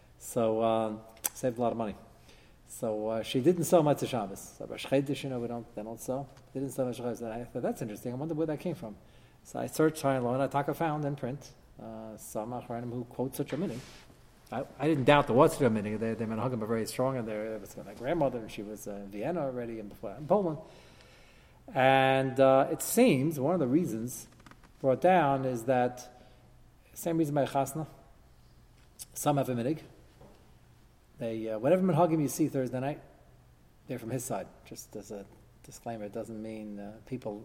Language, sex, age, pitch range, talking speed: English, male, 40-59, 110-140 Hz, 210 wpm